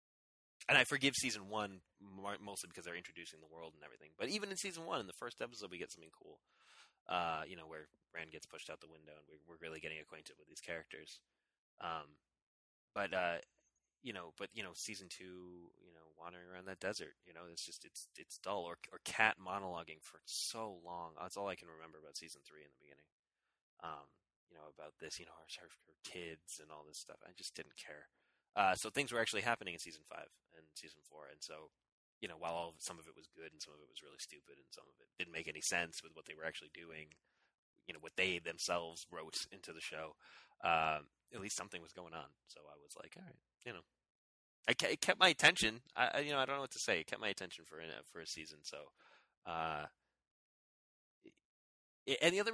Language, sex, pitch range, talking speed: English, male, 80-115 Hz, 230 wpm